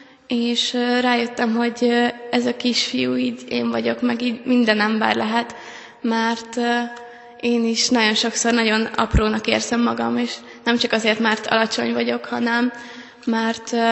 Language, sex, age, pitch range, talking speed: Hungarian, female, 20-39, 225-240 Hz, 140 wpm